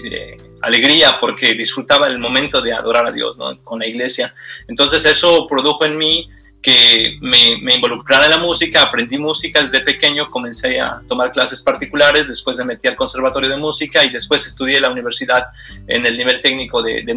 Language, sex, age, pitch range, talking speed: Spanish, male, 30-49, 130-165 Hz, 190 wpm